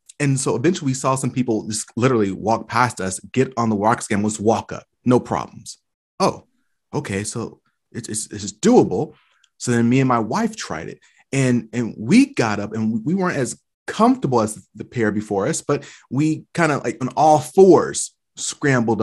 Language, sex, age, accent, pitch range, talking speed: English, male, 30-49, American, 110-160 Hz, 190 wpm